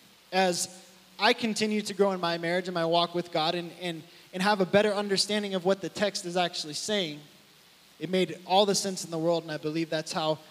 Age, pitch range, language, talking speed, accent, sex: 20-39, 155-195 Hz, English, 230 wpm, American, male